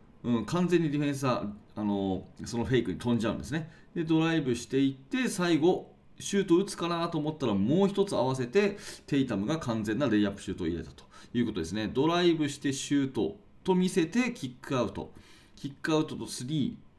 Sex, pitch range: male, 105-155 Hz